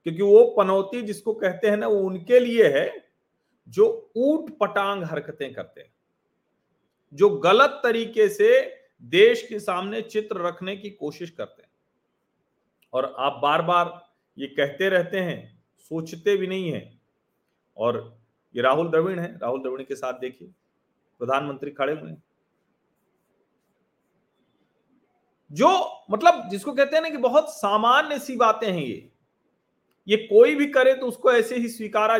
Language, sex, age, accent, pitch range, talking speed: Hindi, male, 40-59, native, 175-260 Hz, 145 wpm